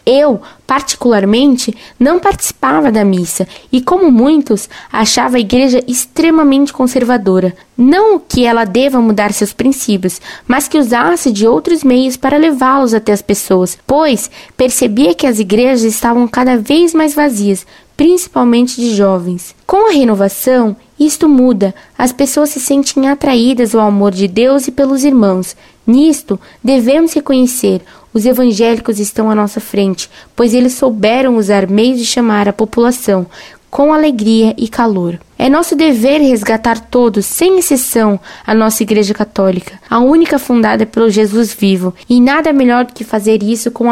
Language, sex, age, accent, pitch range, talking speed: Portuguese, female, 10-29, Brazilian, 215-275 Hz, 150 wpm